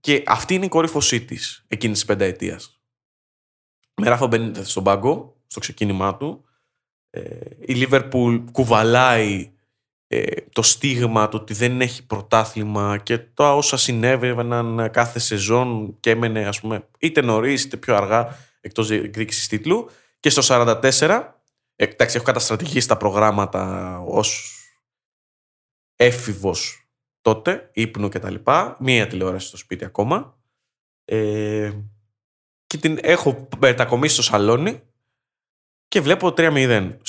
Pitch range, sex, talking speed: 110-135 Hz, male, 125 wpm